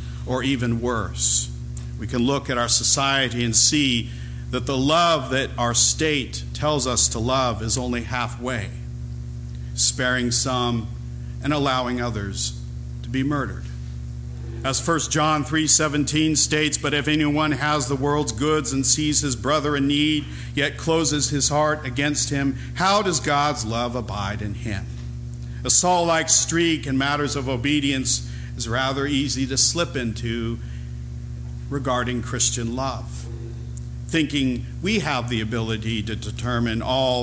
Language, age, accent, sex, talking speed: English, 50-69, American, male, 140 wpm